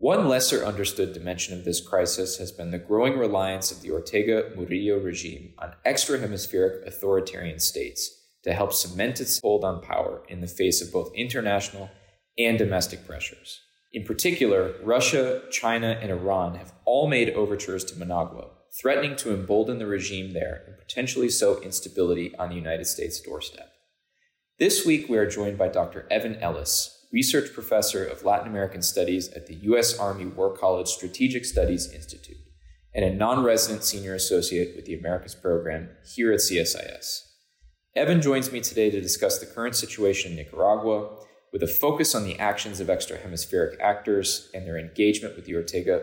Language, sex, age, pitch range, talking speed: English, male, 20-39, 90-115 Hz, 165 wpm